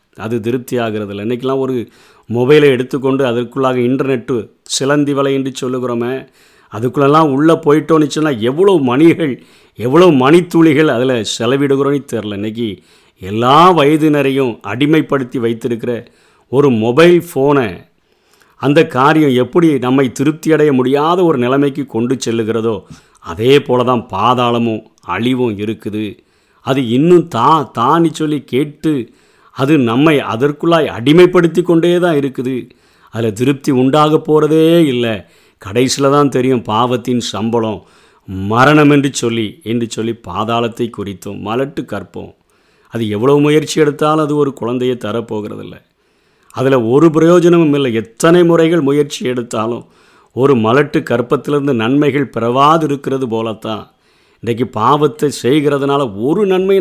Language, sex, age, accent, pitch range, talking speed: Tamil, male, 50-69, native, 115-150 Hz, 115 wpm